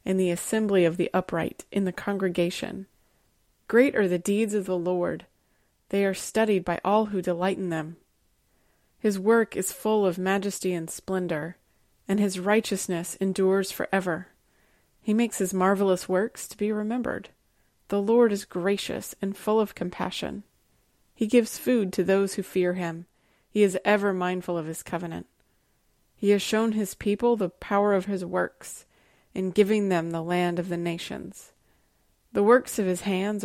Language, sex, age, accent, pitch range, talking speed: English, female, 30-49, American, 180-210 Hz, 165 wpm